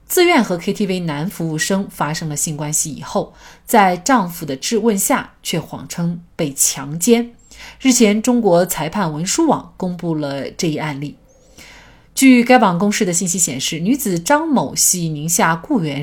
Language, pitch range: Chinese, 155-230 Hz